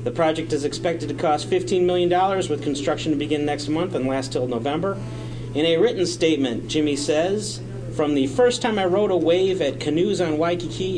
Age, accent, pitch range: 40-59, American, 130-175 Hz